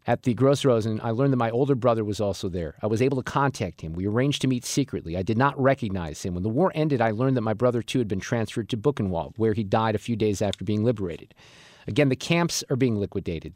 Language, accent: English, American